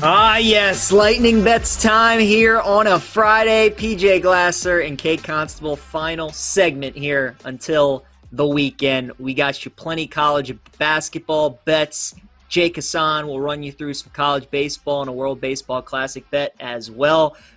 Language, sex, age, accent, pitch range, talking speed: English, male, 30-49, American, 145-195 Hz, 155 wpm